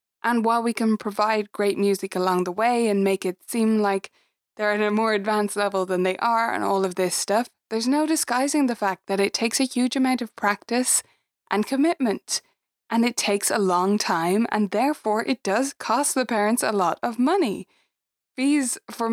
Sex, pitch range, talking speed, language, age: female, 195-245 Hz, 200 wpm, English, 20-39